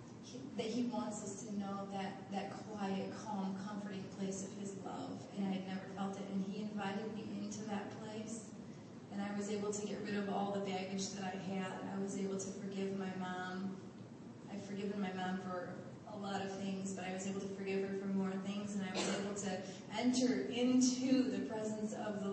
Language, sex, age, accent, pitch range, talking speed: English, female, 30-49, American, 195-230 Hz, 210 wpm